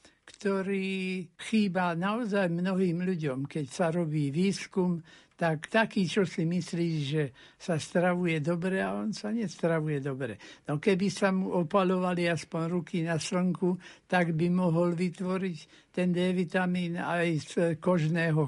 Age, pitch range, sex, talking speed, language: 60-79, 155-185 Hz, male, 135 wpm, Slovak